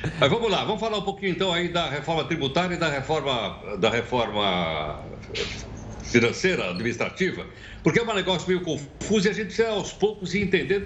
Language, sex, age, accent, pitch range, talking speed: Portuguese, male, 60-79, Brazilian, 145-200 Hz, 180 wpm